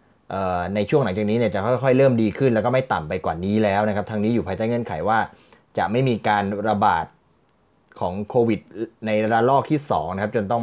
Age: 20-39